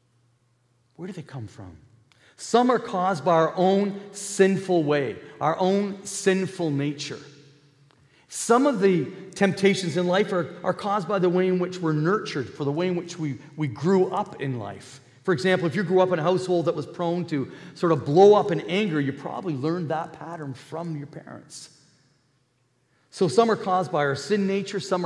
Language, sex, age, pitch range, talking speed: English, male, 40-59, 140-185 Hz, 190 wpm